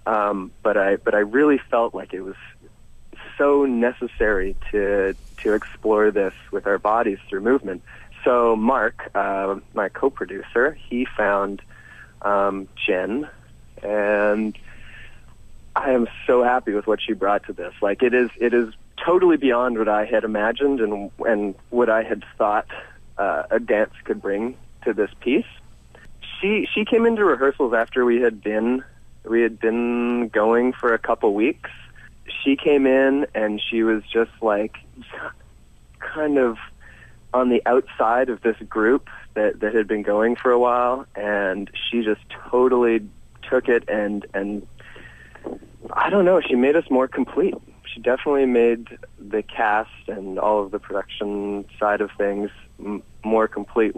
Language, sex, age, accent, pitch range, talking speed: English, male, 30-49, American, 105-125 Hz, 155 wpm